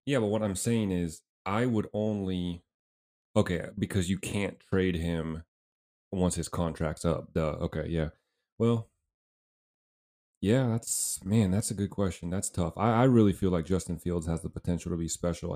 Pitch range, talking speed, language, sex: 85-100 Hz, 175 wpm, English, male